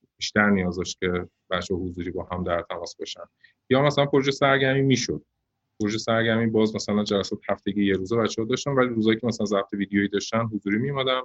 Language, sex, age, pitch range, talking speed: Persian, male, 30-49, 100-120 Hz, 180 wpm